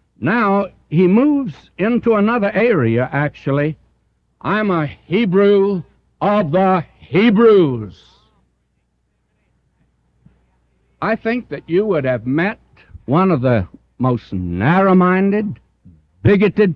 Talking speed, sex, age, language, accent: 95 wpm, male, 60-79, English, American